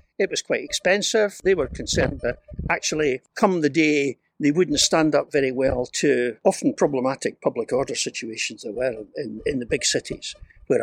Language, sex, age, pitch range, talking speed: English, male, 60-79, 145-230 Hz, 175 wpm